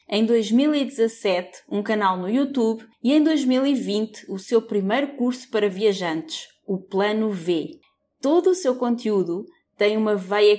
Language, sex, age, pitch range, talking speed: Portuguese, female, 20-39, 190-245 Hz, 140 wpm